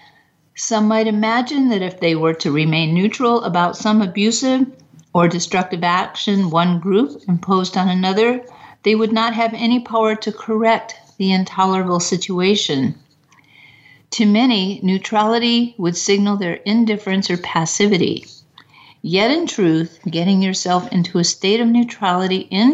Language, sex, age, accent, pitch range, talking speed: English, female, 50-69, American, 180-220 Hz, 135 wpm